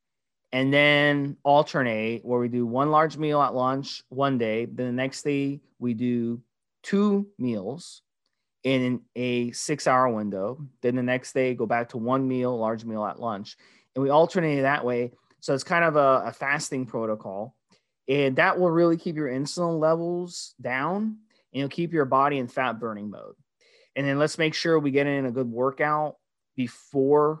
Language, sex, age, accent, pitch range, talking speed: English, male, 20-39, American, 120-145 Hz, 180 wpm